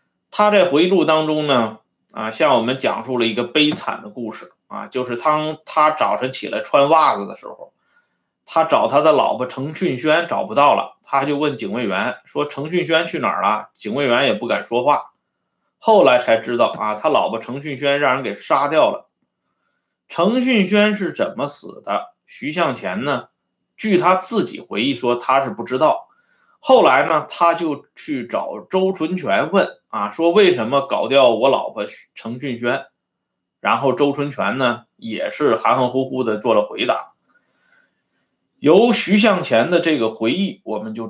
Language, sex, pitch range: Chinese, male, 130-195 Hz